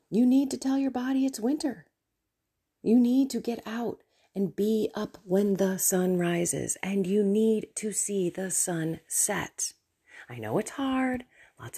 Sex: female